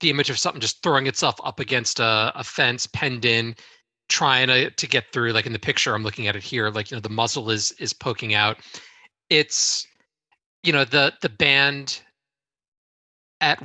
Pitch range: 110-140 Hz